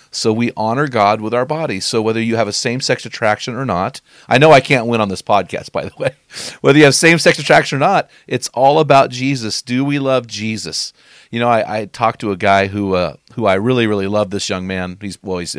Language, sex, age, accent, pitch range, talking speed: English, male, 40-59, American, 100-130 Hz, 245 wpm